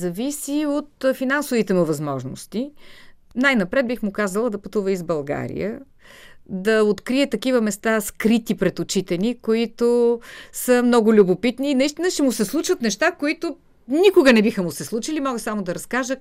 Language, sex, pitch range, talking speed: Bulgarian, female, 190-260 Hz, 160 wpm